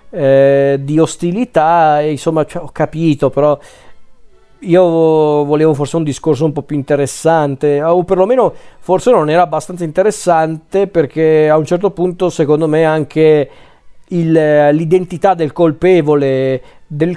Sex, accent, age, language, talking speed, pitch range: male, native, 40-59, Italian, 120 wpm, 145-180 Hz